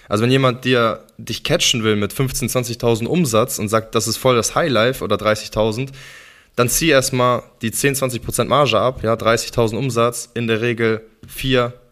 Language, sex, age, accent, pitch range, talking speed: German, male, 20-39, German, 105-125 Hz, 175 wpm